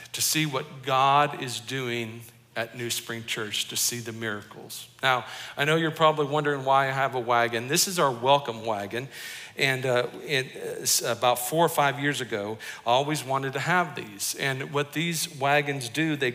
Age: 50-69